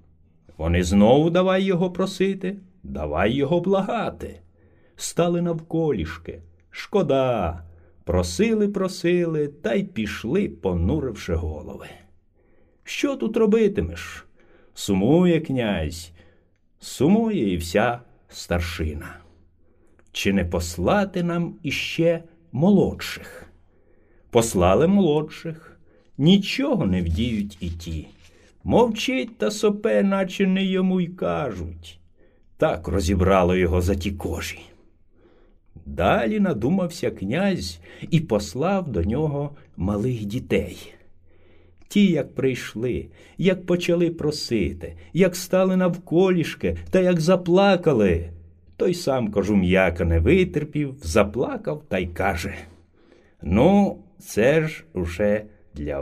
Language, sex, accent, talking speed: Ukrainian, male, native, 95 wpm